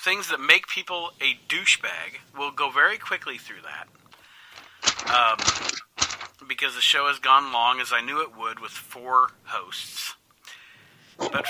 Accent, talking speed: American, 145 wpm